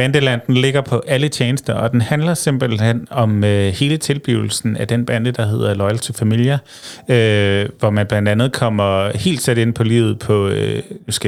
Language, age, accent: Danish, 30-49, native